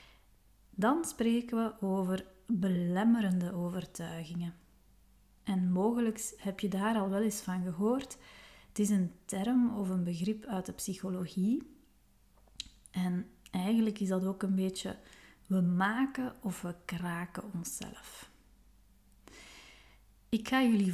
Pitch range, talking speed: 180-230 Hz, 120 wpm